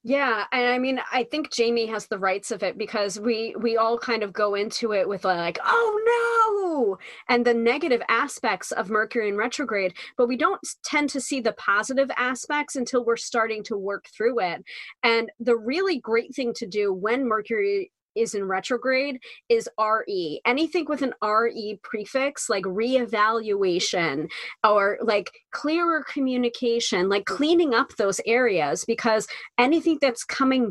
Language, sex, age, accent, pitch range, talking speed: English, female, 30-49, American, 215-270 Hz, 160 wpm